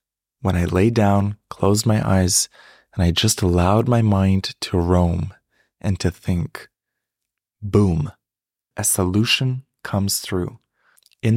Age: 20-39